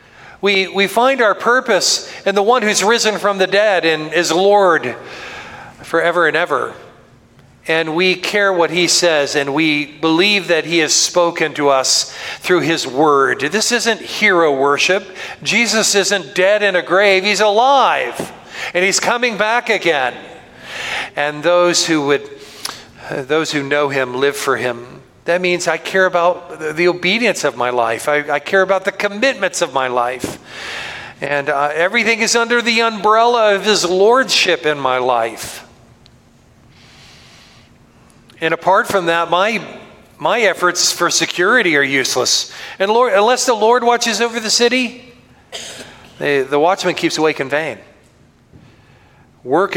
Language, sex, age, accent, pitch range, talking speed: English, male, 40-59, American, 145-205 Hz, 150 wpm